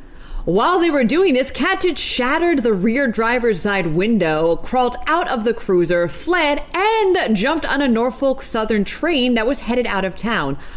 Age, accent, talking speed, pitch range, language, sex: 30-49, American, 175 wpm, 155-235 Hz, English, female